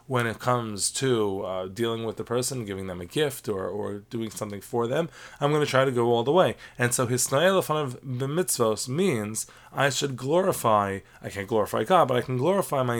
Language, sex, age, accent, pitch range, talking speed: English, male, 20-39, American, 110-135 Hz, 210 wpm